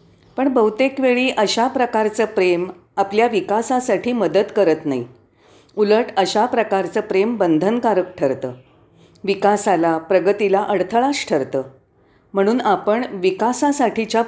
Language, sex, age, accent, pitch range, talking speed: Marathi, female, 40-59, native, 150-240 Hz, 100 wpm